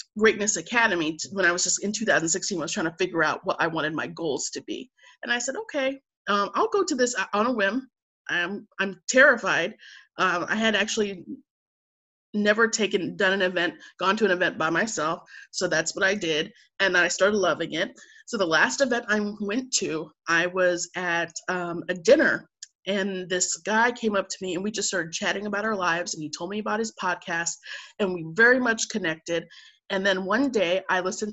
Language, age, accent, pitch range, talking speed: English, 30-49, American, 175-220 Hz, 205 wpm